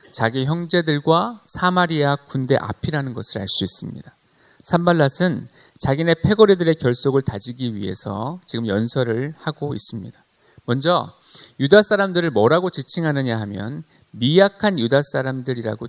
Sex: male